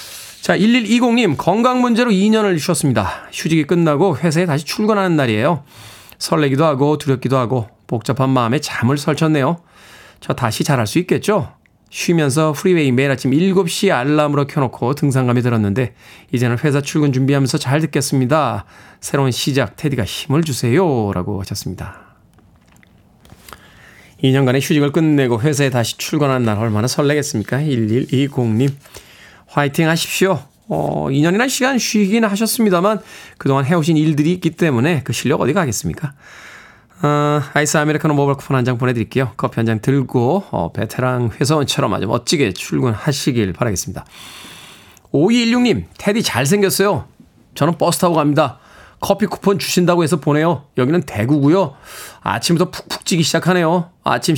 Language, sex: Korean, male